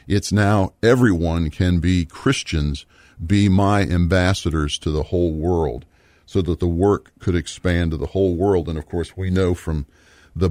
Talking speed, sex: 170 wpm, male